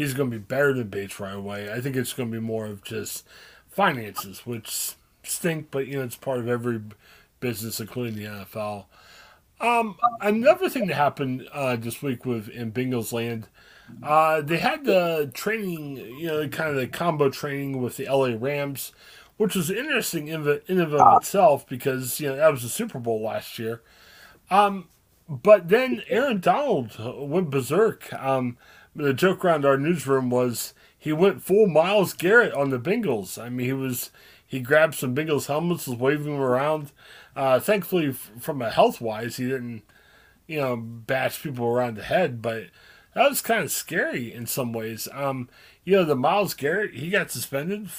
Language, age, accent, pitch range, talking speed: English, 30-49, American, 125-165 Hz, 180 wpm